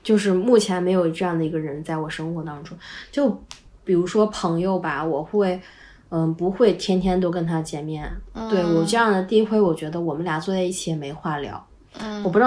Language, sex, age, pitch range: Chinese, female, 20-39, 160-205 Hz